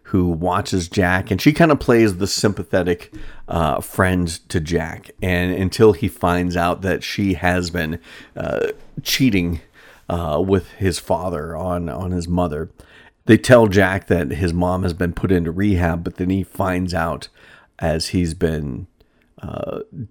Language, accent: English, American